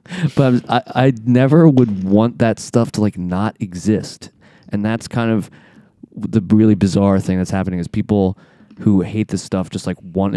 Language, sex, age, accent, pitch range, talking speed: English, male, 20-39, American, 90-110 Hz, 190 wpm